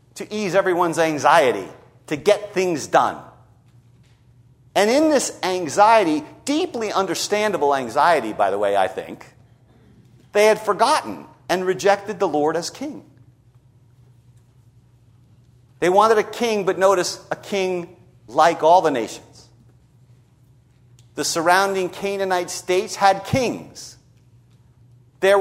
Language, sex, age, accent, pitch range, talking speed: English, male, 50-69, American, 125-195 Hz, 115 wpm